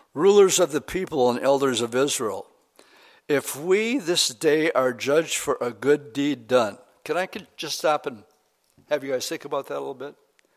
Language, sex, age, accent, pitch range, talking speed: English, male, 60-79, American, 130-175 Hz, 185 wpm